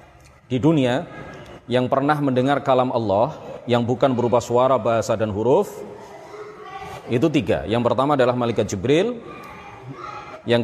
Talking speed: 125 wpm